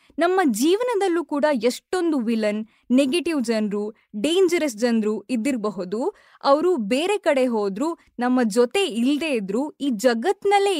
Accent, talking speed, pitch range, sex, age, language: native, 110 wpm, 235-330 Hz, female, 20-39, Kannada